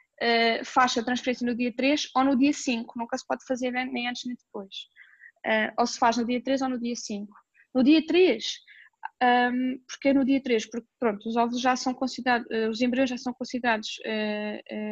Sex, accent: female, Brazilian